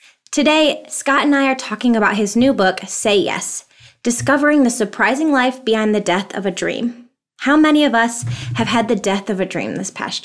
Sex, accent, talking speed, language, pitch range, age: female, American, 205 wpm, English, 210-270 Hz, 20-39